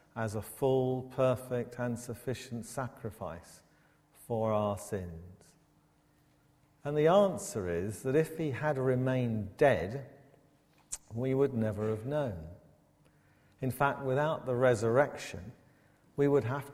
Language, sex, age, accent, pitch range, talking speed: English, male, 50-69, British, 110-140 Hz, 120 wpm